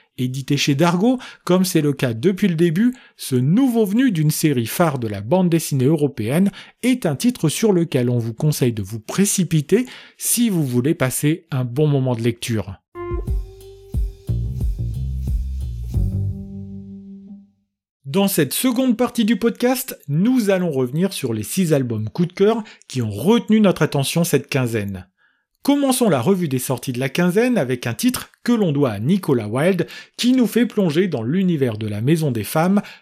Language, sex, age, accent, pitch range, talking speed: French, male, 40-59, French, 125-200 Hz, 165 wpm